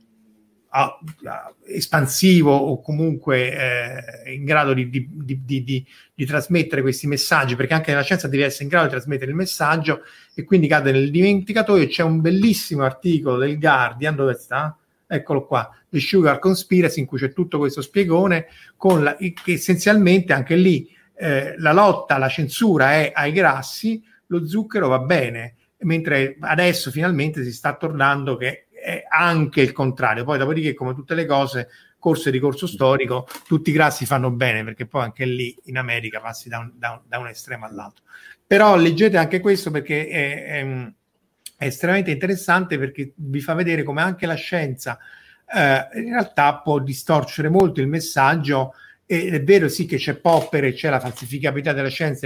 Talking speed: 170 wpm